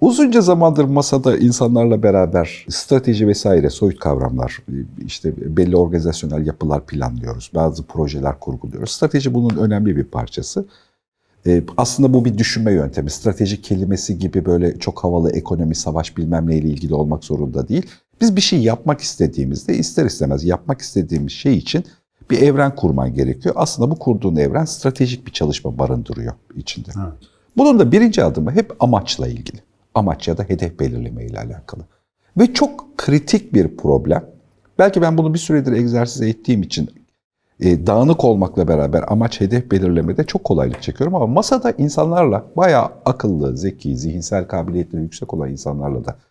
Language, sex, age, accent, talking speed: Turkish, male, 50-69, native, 150 wpm